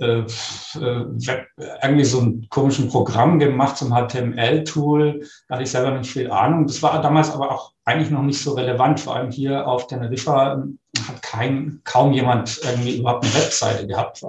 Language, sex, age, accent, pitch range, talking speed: German, male, 50-69, German, 125-155 Hz, 165 wpm